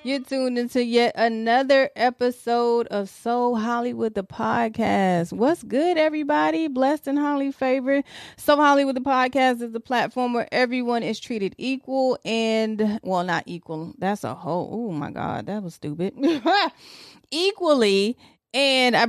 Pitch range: 195-250 Hz